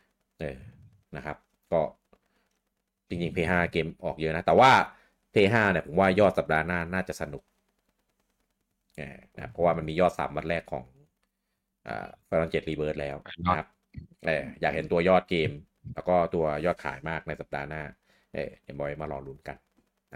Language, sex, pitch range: Thai, male, 80-110 Hz